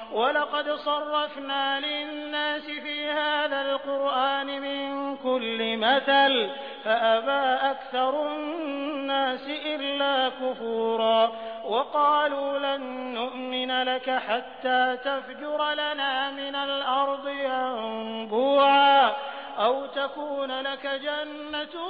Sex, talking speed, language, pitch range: male, 75 wpm, Hindi, 255-295 Hz